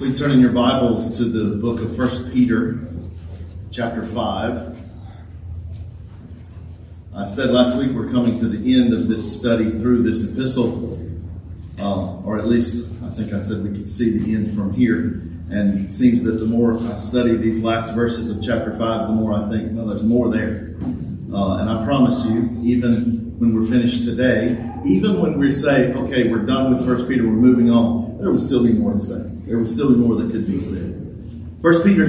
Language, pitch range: English, 105-125 Hz